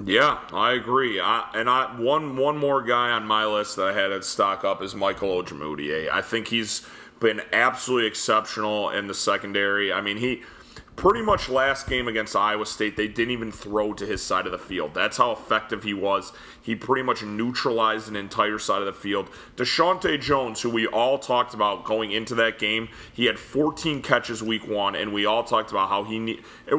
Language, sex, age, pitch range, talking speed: English, male, 30-49, 105-120 Hz, 205 wpm